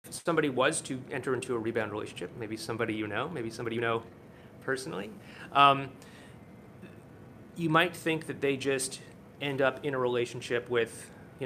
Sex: male